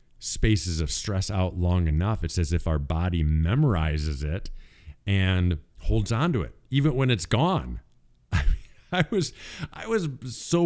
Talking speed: 160 wpm